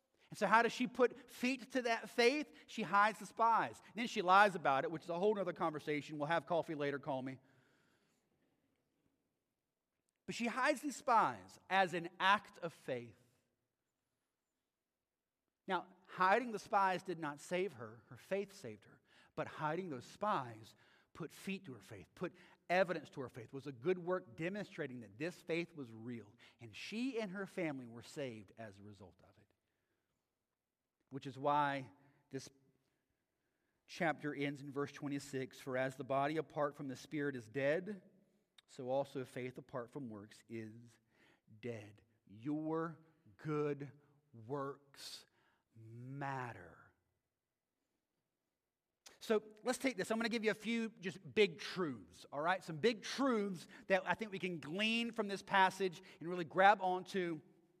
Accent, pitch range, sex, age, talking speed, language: American, 130-195 Hz, male, 40-59, 160 wpm, English